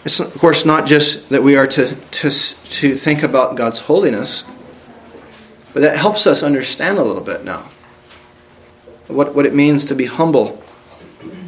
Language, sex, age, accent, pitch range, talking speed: English, male, 40-59, American, 130-160 Hz, 160 wpm